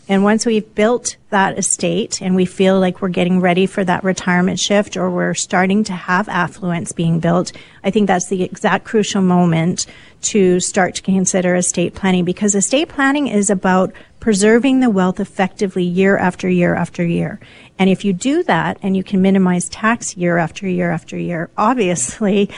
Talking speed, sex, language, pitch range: 180 wpm, female, English, 180-205 Hz